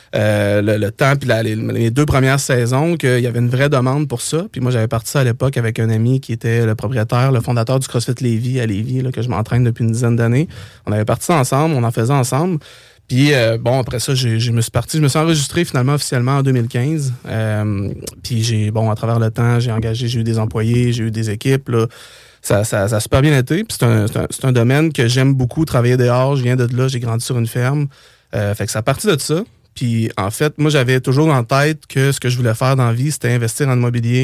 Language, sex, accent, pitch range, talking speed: French, male, Canadian, 115-135 Hz, 270 wpm